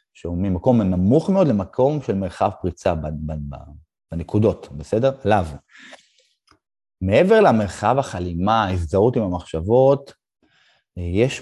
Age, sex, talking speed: 30-49, male, 95 wpm